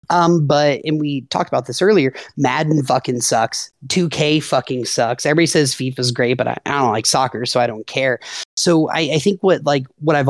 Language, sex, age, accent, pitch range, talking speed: English, male, 30-49, American, 130-165 Hz, 215 wpm